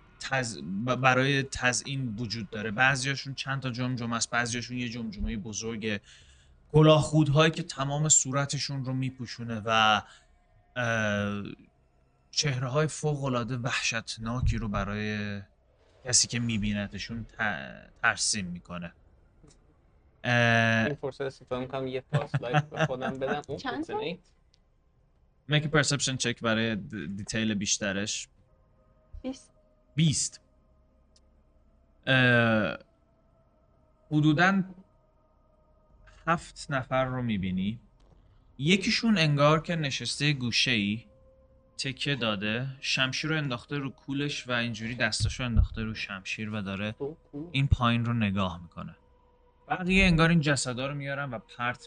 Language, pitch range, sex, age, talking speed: Persian, 105-140 Hz, male, 30-49, 105 wpm